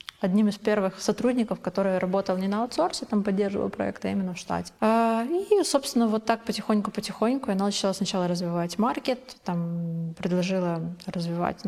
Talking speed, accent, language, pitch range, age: 145 wpm, native, Ukrainian, 185-220 Hz, 20-39